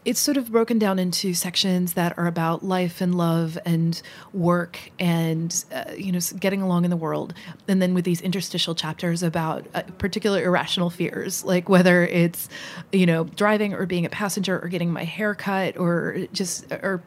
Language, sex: English, female